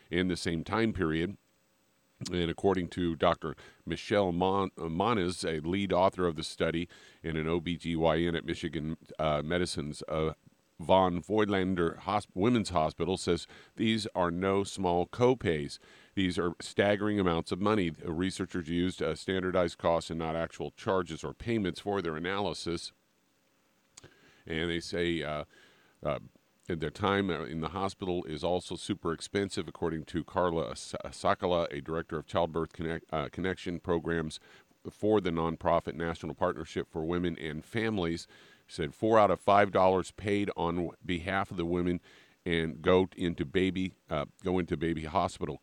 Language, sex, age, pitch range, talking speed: English, male, 50-69, 80-95 Hz, 155 wpm